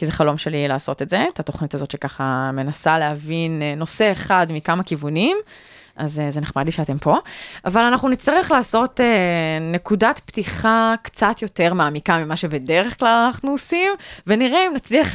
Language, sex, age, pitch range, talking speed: Hebrew, female, 20-39, 160-240 Hz, 155 wpm